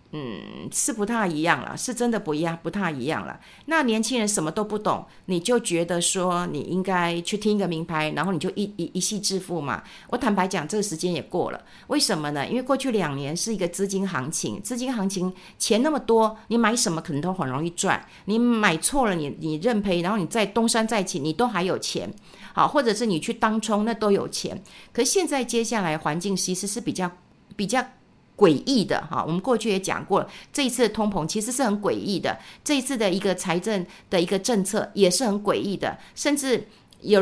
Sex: female